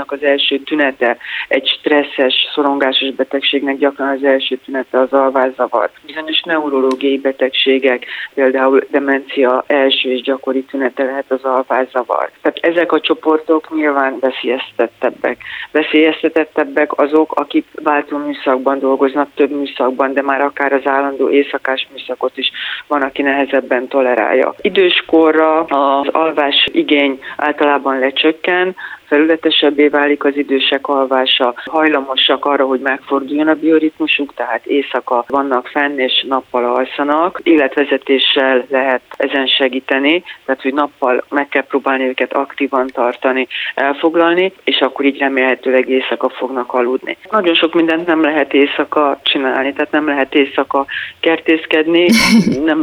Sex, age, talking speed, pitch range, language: female, 30-49, 125 wpm, 130-150 Hz, Hungarian